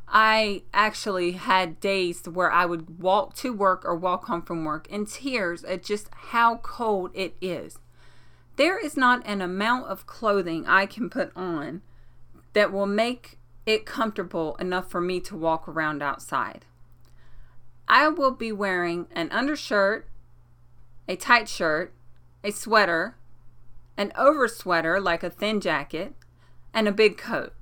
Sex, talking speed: female, 145 wpm